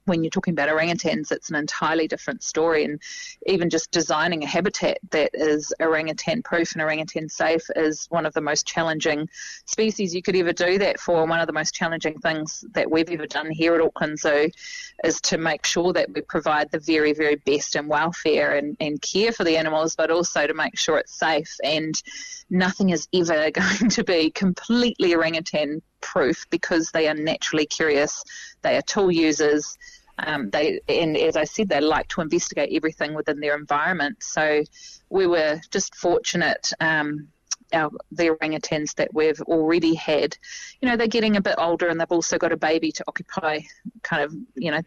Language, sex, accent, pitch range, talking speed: English, female, Australian, 155-200 Hz, 185 wpm